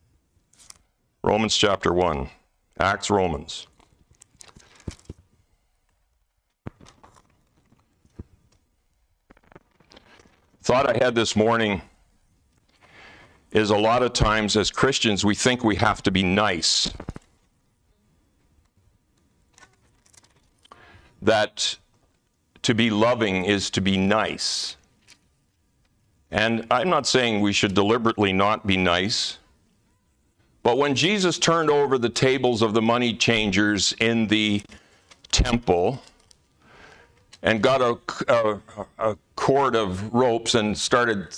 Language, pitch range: English, 95-120 Hz